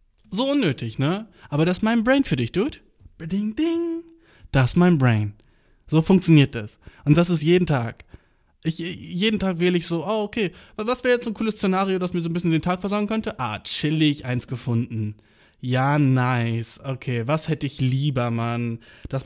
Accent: German